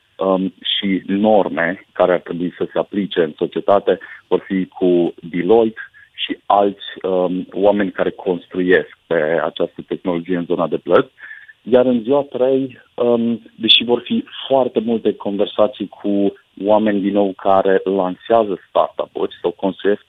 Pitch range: 95-110 Hz